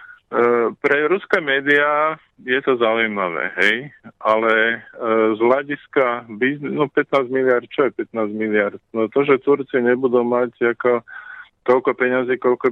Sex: male